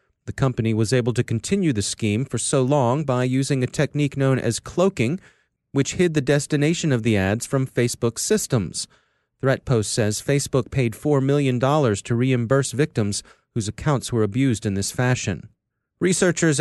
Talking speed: 165 wpm